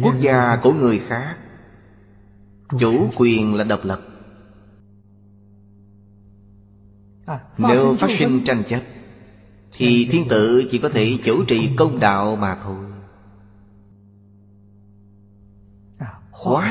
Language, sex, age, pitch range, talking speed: Vietnamese, male, 20-39, 100-120 Hz, 100 wpm